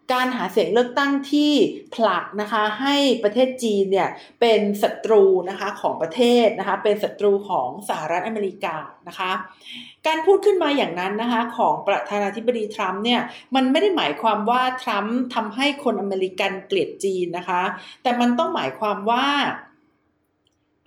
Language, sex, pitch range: Thai, female, 195-255 Hz